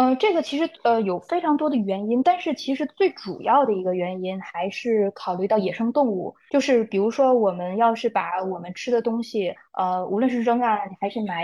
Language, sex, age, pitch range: Chinese, female, 20-39, 195-255 Hz